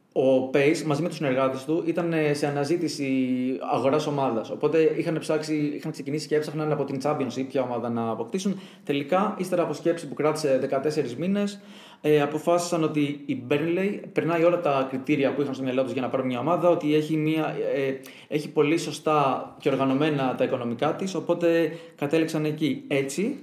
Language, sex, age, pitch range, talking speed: Greek, male, 20-39, 140-175 Hz, 180 wpm